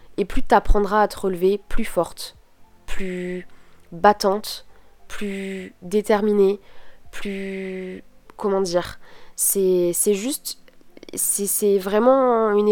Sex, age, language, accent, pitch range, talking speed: female, 20-39, French, French, 190-230 Hz, 110 wpm